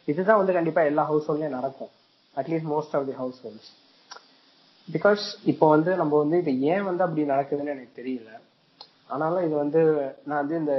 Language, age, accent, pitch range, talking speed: Tamil, 20-39, native, 130-155 Hz, 170 wpm